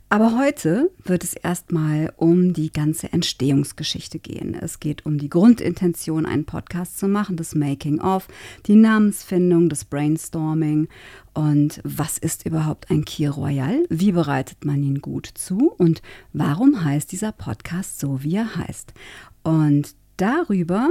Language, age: German, 50-69